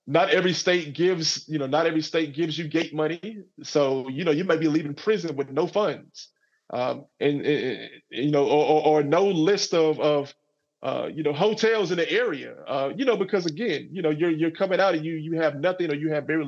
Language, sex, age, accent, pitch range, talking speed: English, male, 20-39, American, 145-175 Hz, 230 wpm